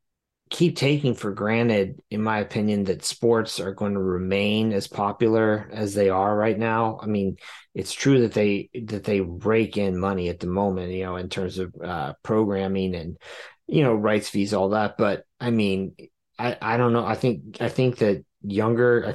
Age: 30-49